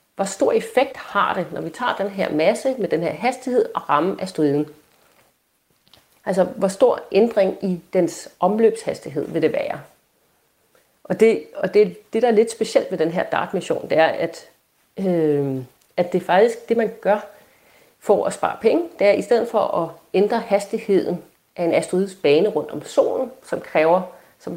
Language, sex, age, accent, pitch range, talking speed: Danish, female, 40-59, native, 170-225 Hz, 180 wpm